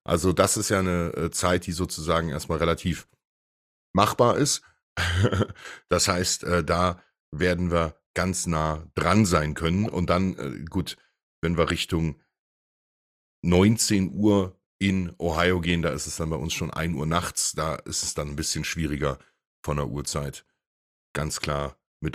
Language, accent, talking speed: English, German, 150 wpm